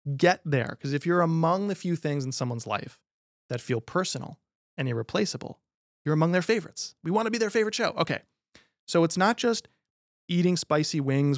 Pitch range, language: 125-170 Hz, English